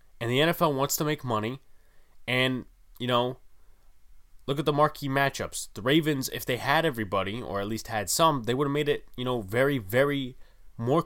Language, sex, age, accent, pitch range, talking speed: English, male, 20-39, American, 100-130 Hz, 195 wpm